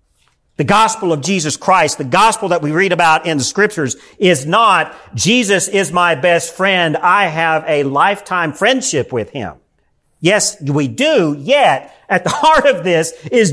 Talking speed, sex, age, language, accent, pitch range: 170 wpm, male, 50-69, English, American, 150-225 Hz